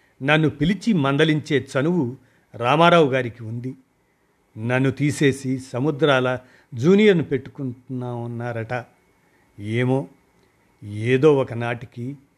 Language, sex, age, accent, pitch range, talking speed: Telugu, male, 50-69, native, 120-140 Hz, 80 wpm